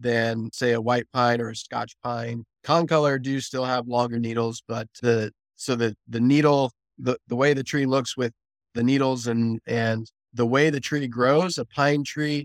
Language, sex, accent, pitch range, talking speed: English, male, American, 115-130 Hz, 195 wpm